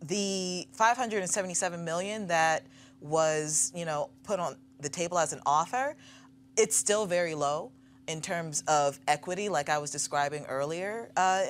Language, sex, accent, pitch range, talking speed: English, female, American, 140-170 Hz, 145 wpm